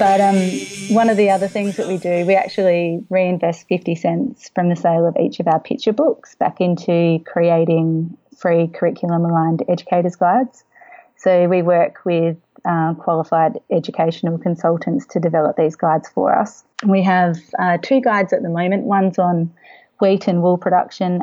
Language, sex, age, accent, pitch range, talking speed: English, female, 30-49, Australian, 170-190 Hz, 170 wpm